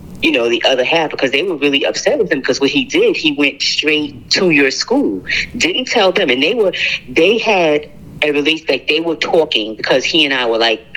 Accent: American